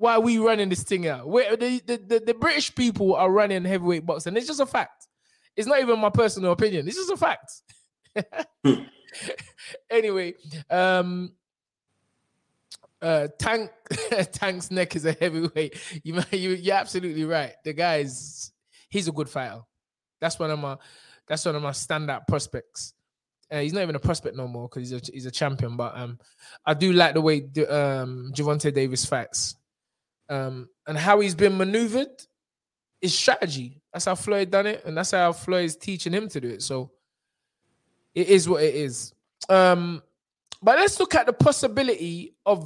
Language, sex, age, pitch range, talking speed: English, male, 20-39, 150-205 Hz, 175 wpm